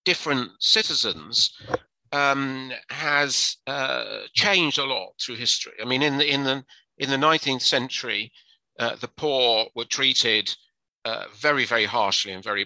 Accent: British